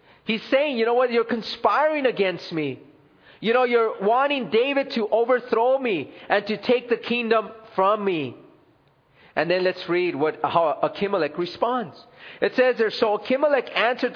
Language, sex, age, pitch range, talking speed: English, male, 40-59, 190-255 Hz, 160 wpm